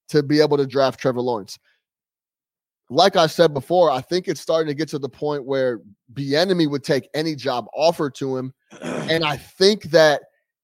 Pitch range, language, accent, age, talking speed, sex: 140-170 Hz, English, American, 30-49, 190 wpm, male